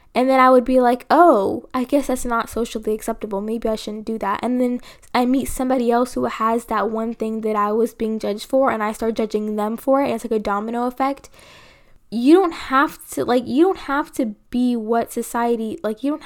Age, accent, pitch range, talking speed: 10-29, American, 225-270 Hz, 230 wpm